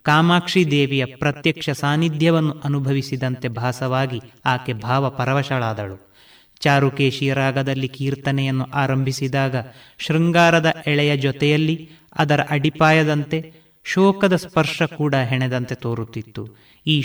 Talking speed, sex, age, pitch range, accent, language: 85 wpm, male, 30-49, 130-150 Hz, native, Kannada